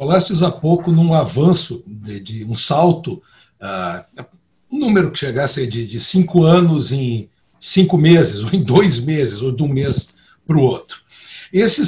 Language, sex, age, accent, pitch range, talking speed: Portuguese, male, 60-79, Brazilian, 140-185 Hz, 165 wpm